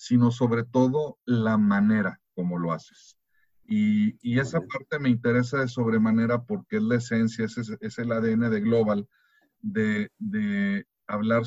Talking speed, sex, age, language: 150 wpm, male, 50-69, English